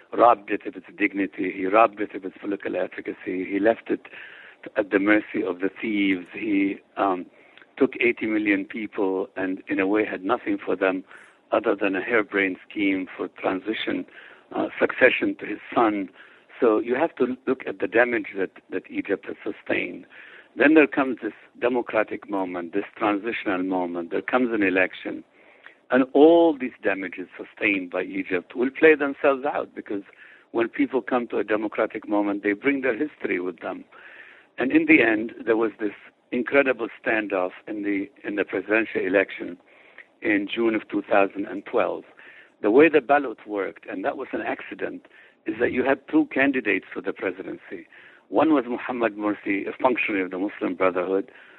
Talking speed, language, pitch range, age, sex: 170 wpm, English, 100-155 Hz, 60-79, male